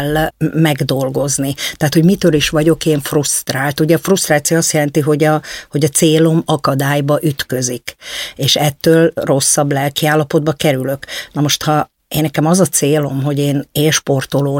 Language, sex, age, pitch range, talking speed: Hungarian, female, 50-69, 145-165 Hz, 150 wpm